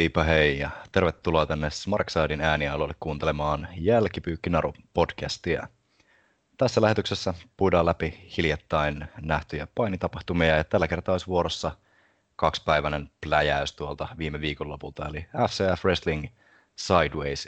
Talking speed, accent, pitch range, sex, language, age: 100 wpm, Finnish, 75-90 Hz, male, English, 30-49